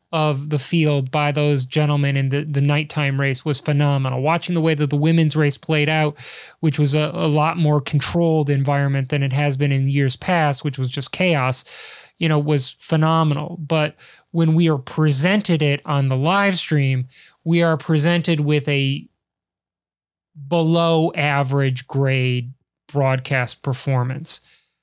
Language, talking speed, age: English, 155 wpm, 30-49